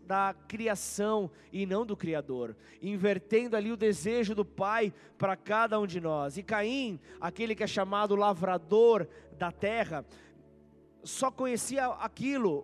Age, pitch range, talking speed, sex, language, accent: 20-39, 160-220 Hz, 140 wpm, male, Portuguese, Brazilian